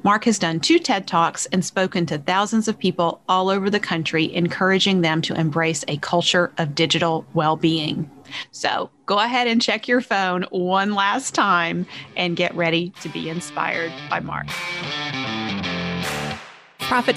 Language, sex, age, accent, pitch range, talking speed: English, female, 40-59, American, 165-200 Hz, 155 wpm